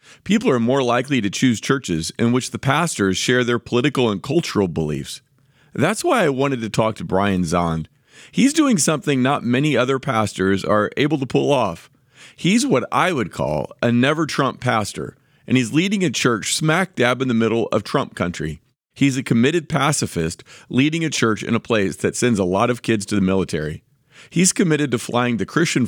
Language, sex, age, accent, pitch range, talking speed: English, male, 40-59, American, 100-140 Hz, 195 wpm